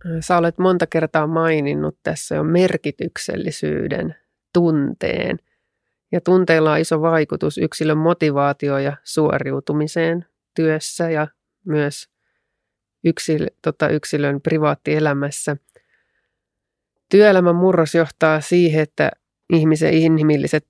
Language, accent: Finnish, native